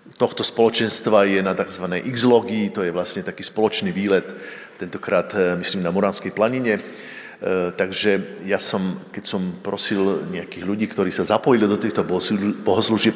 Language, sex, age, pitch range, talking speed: Slovak, male, 50-69, 95-115 Hz, 145 wpm